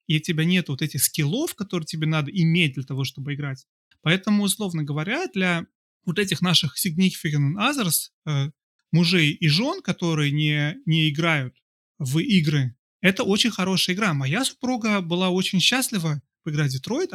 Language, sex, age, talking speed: Russian, male, 30-49, 160 wpm